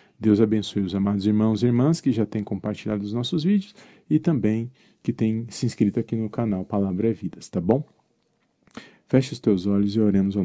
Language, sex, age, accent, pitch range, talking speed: Portuguese, male, 40-59, Brazilian, 95-110 Hz, 200 wpm